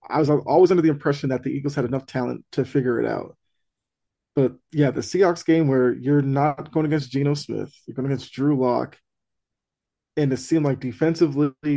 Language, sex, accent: English, male, American